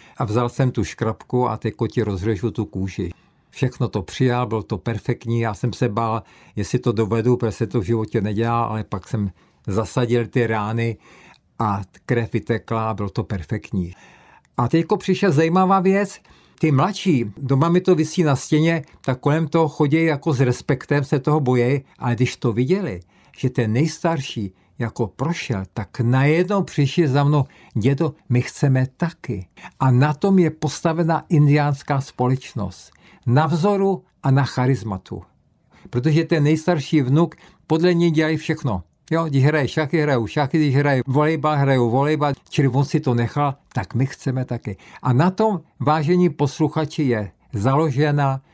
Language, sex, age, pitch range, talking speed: Czech, male, 50-69, 115-155 Hz, 165 wpm